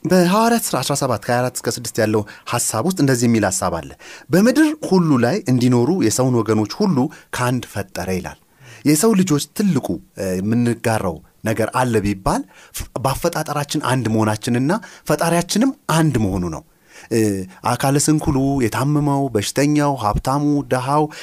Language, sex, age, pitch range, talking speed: Amharic, male, 30-49, 115-160 Hz, 115 wpm